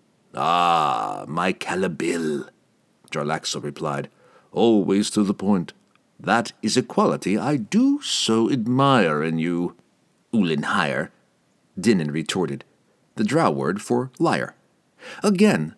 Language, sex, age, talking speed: English, male, 50-69, 105 wpm